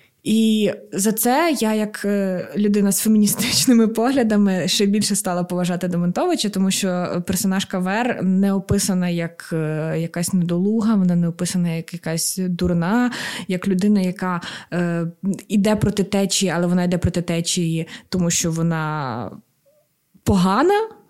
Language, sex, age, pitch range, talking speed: Ukrainian, female, 20-39, 175-210 Hz, 130 wpm